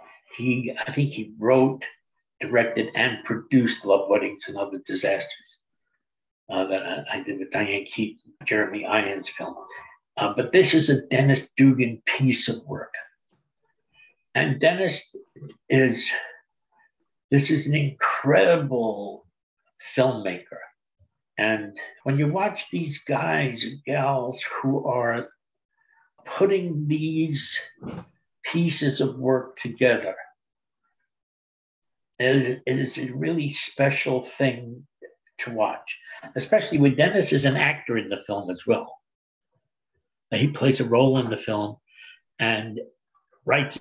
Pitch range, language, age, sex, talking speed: 115-155 Hz, English, 60-79, male, 120 wpm